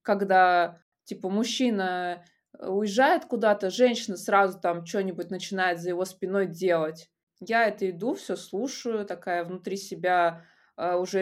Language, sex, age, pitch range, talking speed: Russian, female, 20-39, 180-215 Hz, 125 wpm